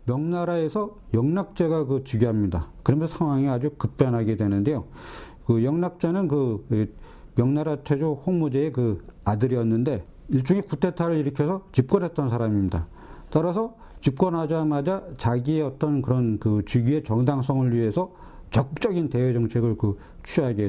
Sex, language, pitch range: male, Korean, 115-165 Hz